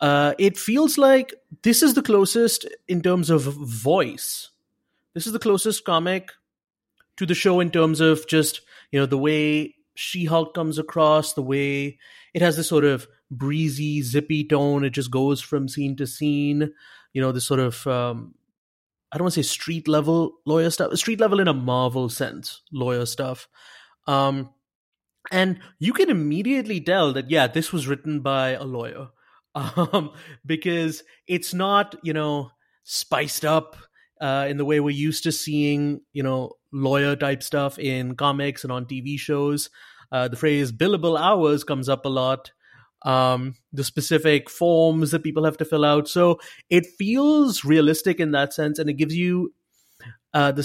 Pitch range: 140-165 Hz